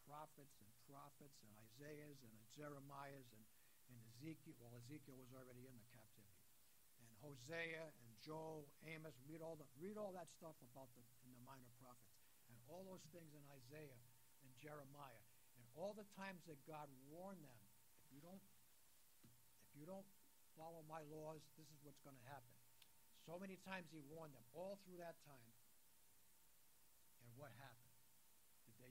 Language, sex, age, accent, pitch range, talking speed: English, male, 60-79, American, 120-155 Hz, 165 wpm